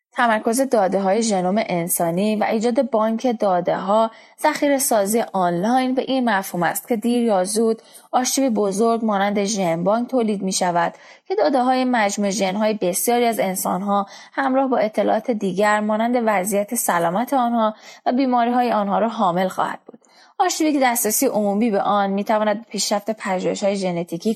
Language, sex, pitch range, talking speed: English, female, 195-240 Hz, 160 wpm